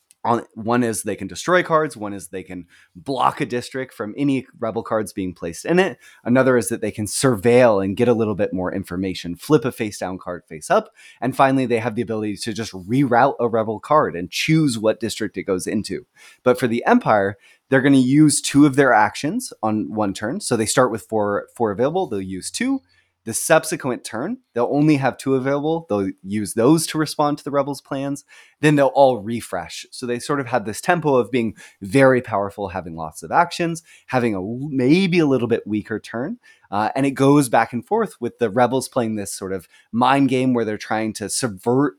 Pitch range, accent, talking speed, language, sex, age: 105-140 Hz, American, 215 wpm, English, male, 20-39